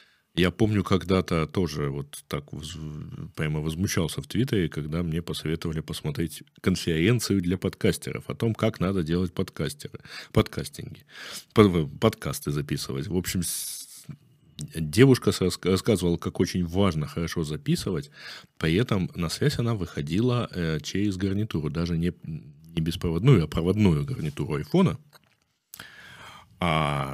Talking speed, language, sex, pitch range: 110 wpm, Russian, male, 80-105 Hz